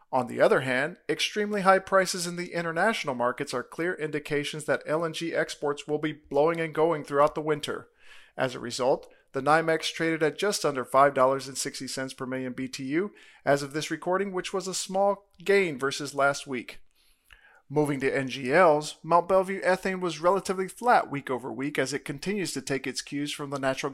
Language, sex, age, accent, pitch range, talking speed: English, male, 40-59, American, 140-175 Hz, 180 wpm